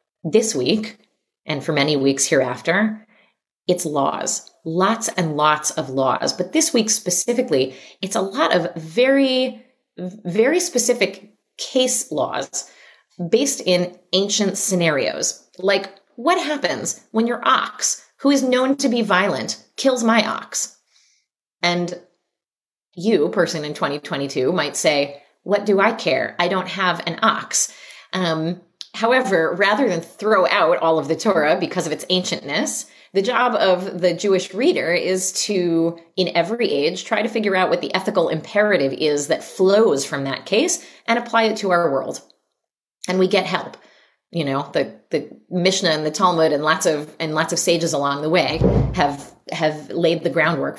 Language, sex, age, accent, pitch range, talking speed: English, female, 30-49, American, 165-220 Hz, 155 wpm